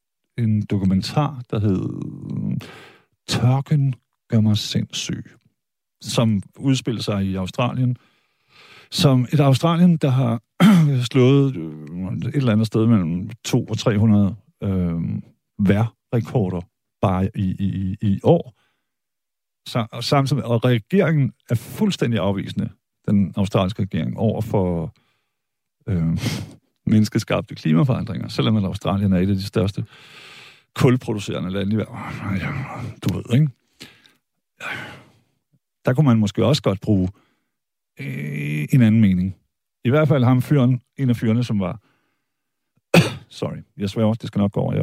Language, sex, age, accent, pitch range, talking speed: Danish, male, 50-69, native, 100-135 Hz, 125 wpm